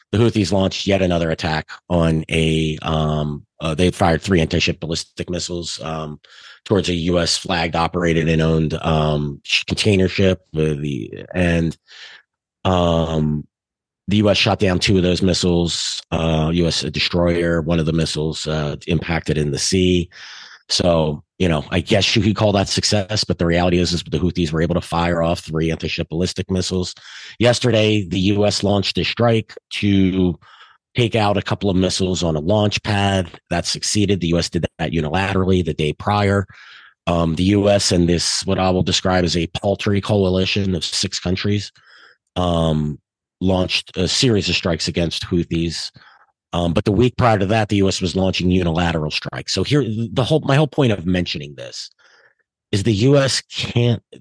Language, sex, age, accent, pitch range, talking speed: English, male, 30-49, American, 85-100 Hz, 170 wpm